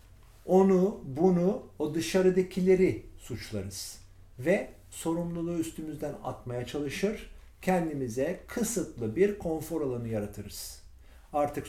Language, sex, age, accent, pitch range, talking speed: Turkish, male, 50-69, native, 115-185 Hz, 85 wpm